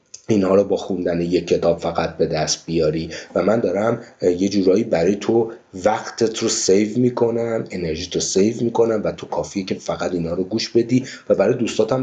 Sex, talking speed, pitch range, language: male, 185 wpm, 110-170 Hz, Persian